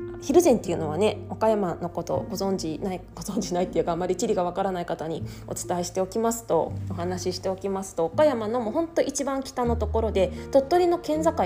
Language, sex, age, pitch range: Japanese, female, 20-39, 175-270 Hz